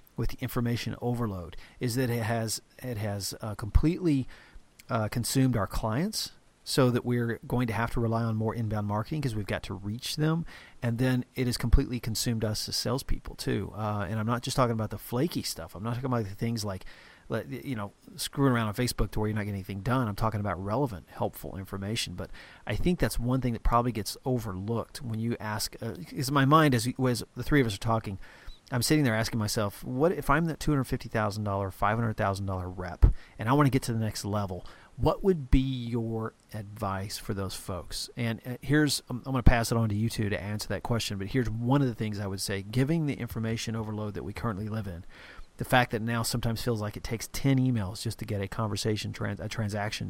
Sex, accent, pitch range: male, American, 105-125 Hz